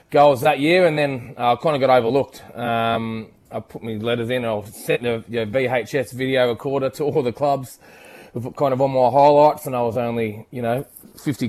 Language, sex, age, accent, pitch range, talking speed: English, male, 20-39, Australian, 120-140 Hz, 210 wpm